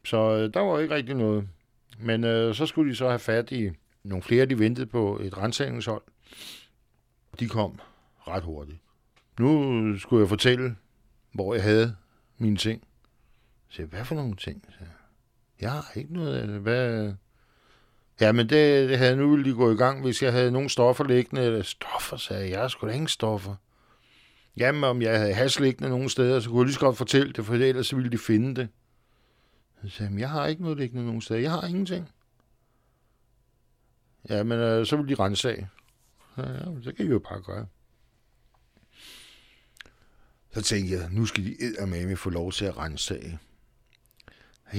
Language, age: Danish, 60-79